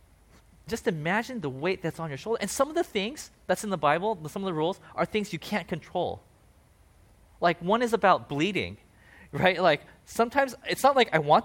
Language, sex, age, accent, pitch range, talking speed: English, male, 20-39, American, 130-200 Hz, 205 wpm